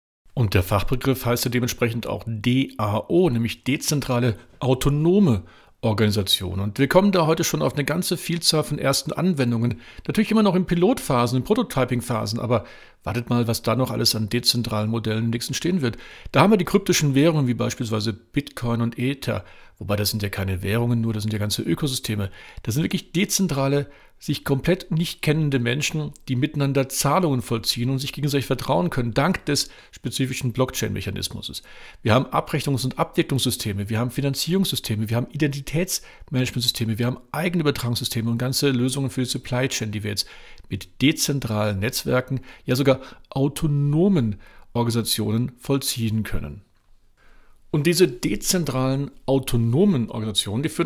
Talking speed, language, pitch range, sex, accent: 155 wpm, German, 110-145 Hz, male, German